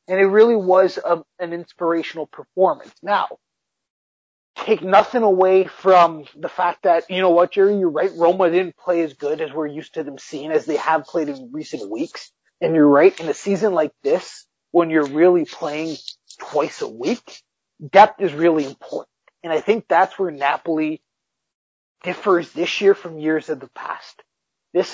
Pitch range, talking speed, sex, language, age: 160-215 Hz, 175 wpm, male, English, 30-49